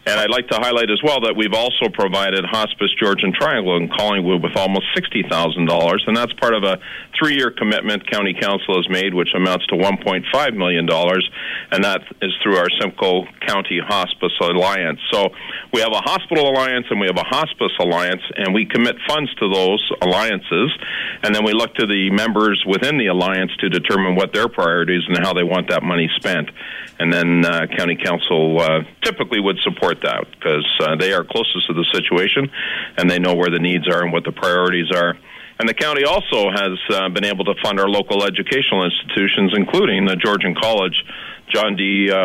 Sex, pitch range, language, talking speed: male, 90-110 Hz, English, 190 wpm